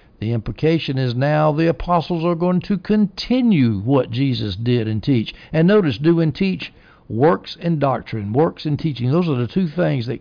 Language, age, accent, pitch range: English, 60-79, American, 120-160 Hz